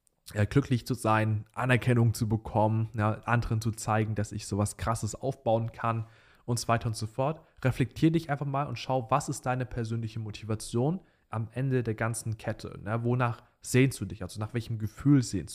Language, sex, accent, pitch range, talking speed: German, male, German, 110-135 Hz, 180 wpm